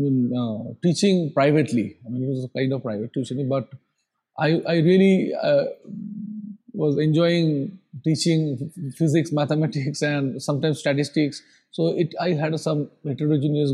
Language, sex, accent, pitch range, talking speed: English, male, Indian, 145-200 Hz, 135 wpm